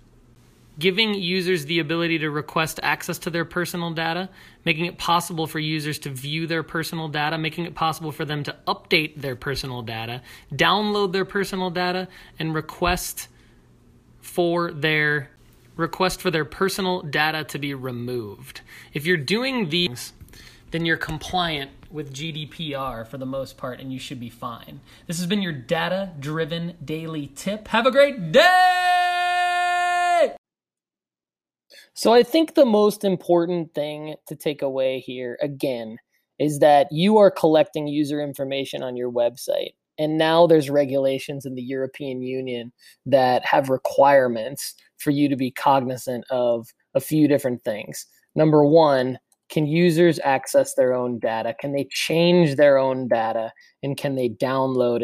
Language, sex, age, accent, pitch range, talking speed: English, male, 30-49, American, 130-175 Hz, 150 wpm